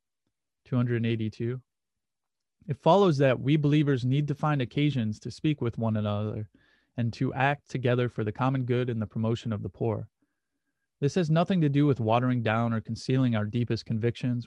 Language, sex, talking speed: English, male, 175 wpm